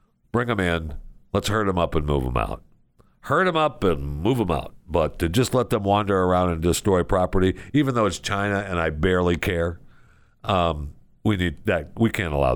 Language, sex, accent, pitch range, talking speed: English, male, American, 75-105 Hz, 205 wpm